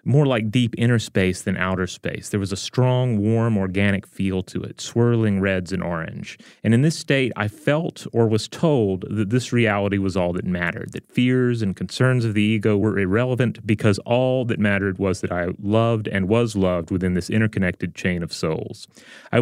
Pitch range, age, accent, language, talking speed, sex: 95-120 Hz, 30-49, American, English, 200 wpm, male